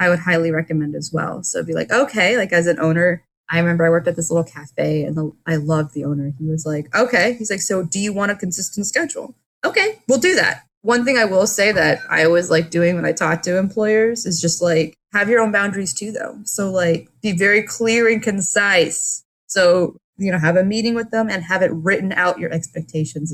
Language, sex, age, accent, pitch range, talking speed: English, female, 20-39, American, 165-215 Hz, 235 wpm